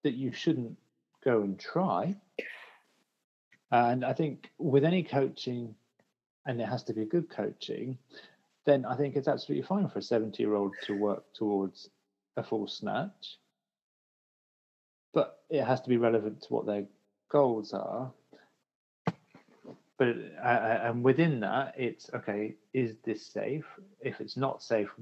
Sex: male